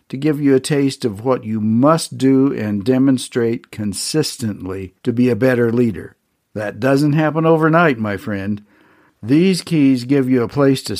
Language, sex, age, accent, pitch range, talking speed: English, male, 60-79, American, 115-145 Hz, 170 wpm